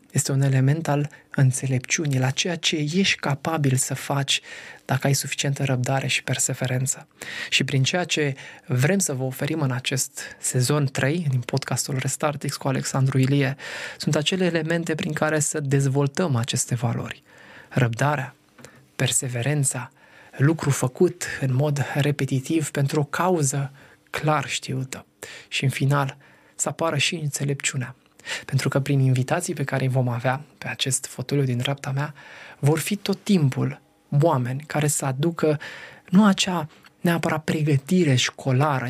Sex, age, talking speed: male, 20-39, 140 wpm